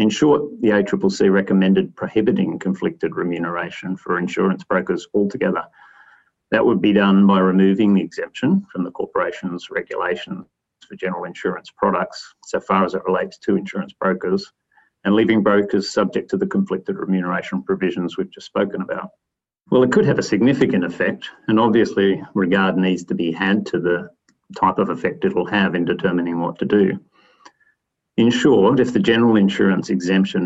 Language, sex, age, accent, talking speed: English, male, 40-59, Australian, 165 wpm